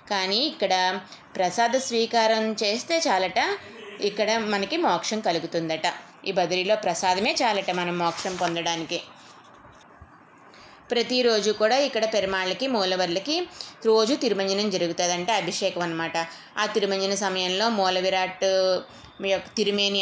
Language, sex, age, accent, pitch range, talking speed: Telugu, female, 20-39, native, 180-210 Hz, 100 wpm